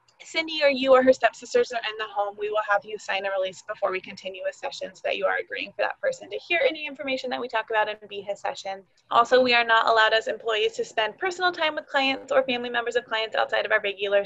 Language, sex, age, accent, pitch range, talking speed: English, female, 20-39, American, 205-285 Hz, 270 wpm